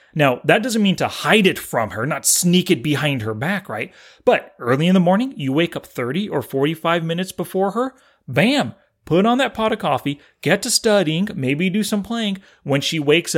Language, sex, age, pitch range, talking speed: English, male, 30-49, 140-205 Hz, 210 wpm